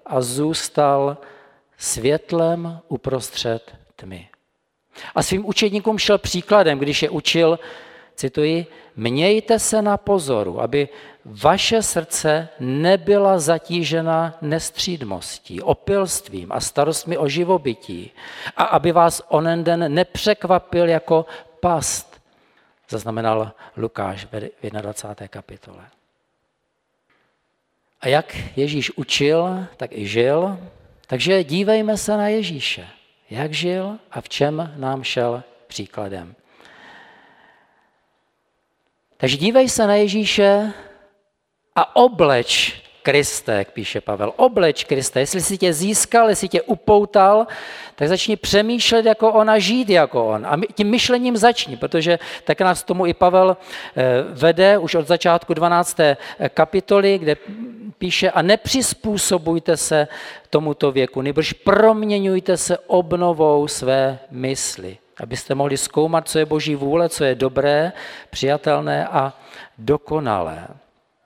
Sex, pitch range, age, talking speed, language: male, 135-195 Hz, 50-69, 115 wpm, Czech